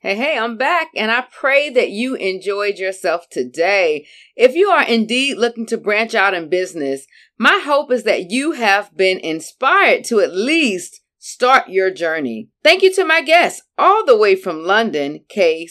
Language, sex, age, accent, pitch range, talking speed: English, female, 30-49, American, 185-285 Hz, 180 wpm